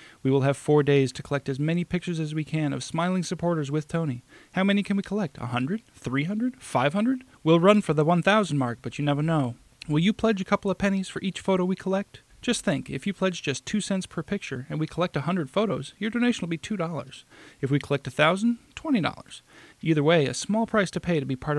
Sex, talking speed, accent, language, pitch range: male, 255 wpm, American, English, 140-185 Hz